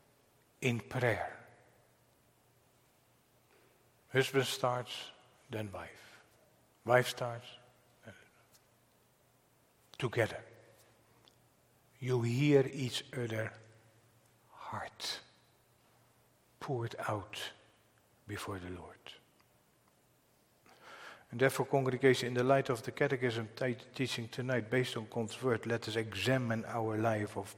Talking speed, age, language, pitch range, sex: 90 wpm, 60-79, English, 115-135 Hz, male